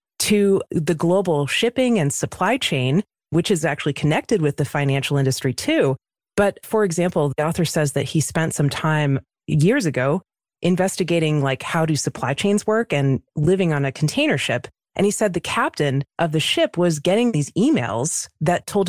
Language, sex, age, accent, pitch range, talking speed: English, female, 30-49, American, 145-185 Hz, 180 wpm